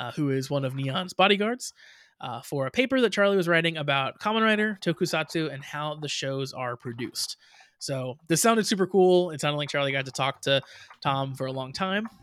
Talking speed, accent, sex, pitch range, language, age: 210 wpm, American, male, 135-185 Hz, English, 20-39